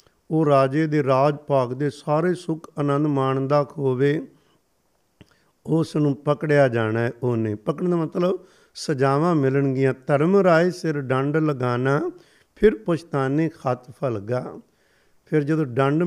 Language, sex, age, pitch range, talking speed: Punjabi, male, 50-69, 135-165 Hz, 125 wpm